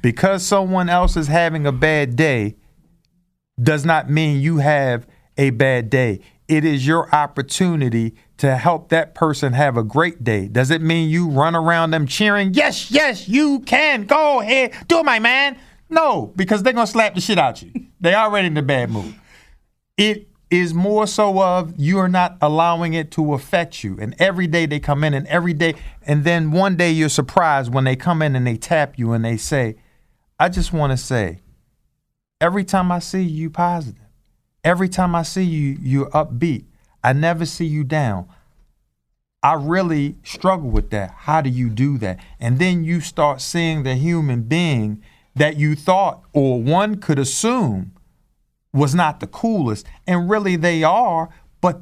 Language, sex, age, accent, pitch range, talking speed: English, male, 50-69, American, 140-180 Hz, 185 wpm